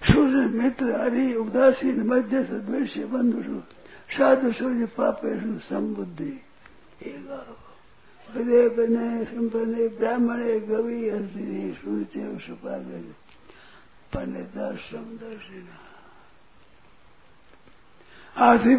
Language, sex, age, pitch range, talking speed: Hindi, male, 60-79, 210-255 Hz, 65 wpm